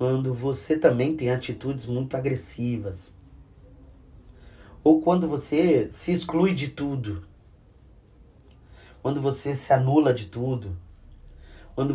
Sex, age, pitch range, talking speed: male, 30-49, 100-135 Hz, 105 wpm